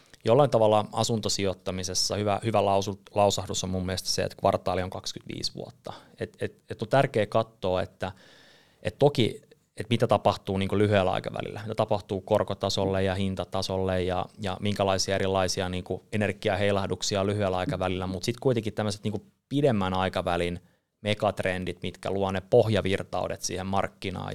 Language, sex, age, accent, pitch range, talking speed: Finnish, male, 30-49, native, 95-105 Hz, 145 wpm